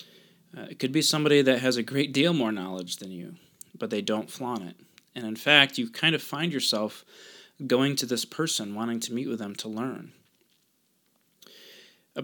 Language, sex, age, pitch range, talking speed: English, male, 20-39, 110-145 Hz, 190 wpm